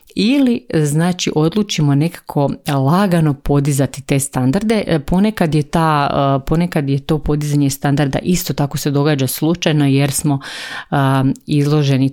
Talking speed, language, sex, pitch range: 120 wpm, Croatian, female, 140-160 Hz